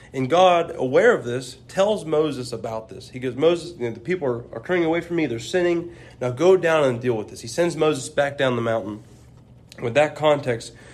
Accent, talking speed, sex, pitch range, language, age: American, 225 wpm, male, 120-155 Hz, English, 30-49